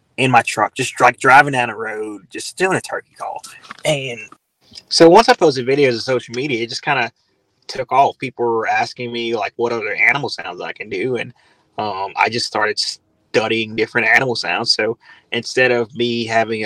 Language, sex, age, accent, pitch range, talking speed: English, male, 20-39, American, 115-140 Hz, 200 wpm